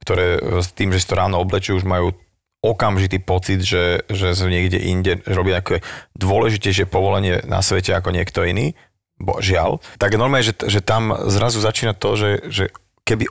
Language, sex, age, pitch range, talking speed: Slovak, male, 30-49, 95-105 Hz, 185 wpm